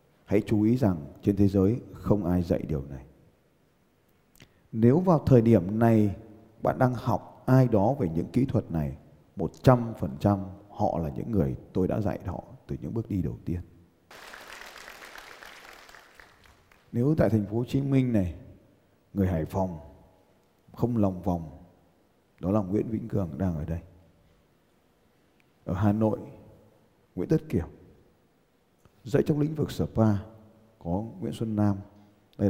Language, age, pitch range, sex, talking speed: Vietnamese, 20-39, 90-115 Hz, male, 150 wpm